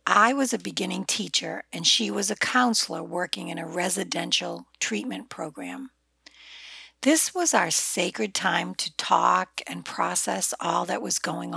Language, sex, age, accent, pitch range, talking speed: English, female, 60-79, American, 185-255 Hz, 150 wpm